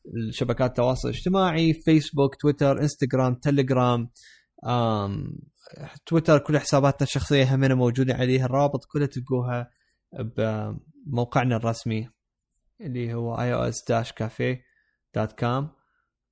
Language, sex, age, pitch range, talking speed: Arabic, male, 20-39, 115-140 Hz, 80 wpm